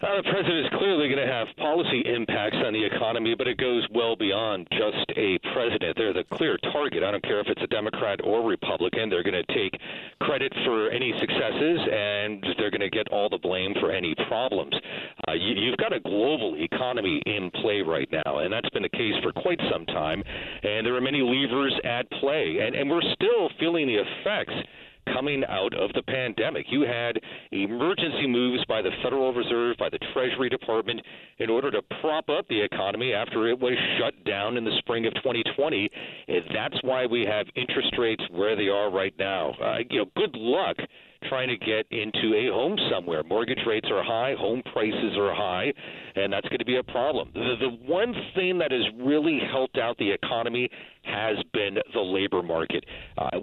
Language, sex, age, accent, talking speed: English, male, 40-59, American, 200 wpm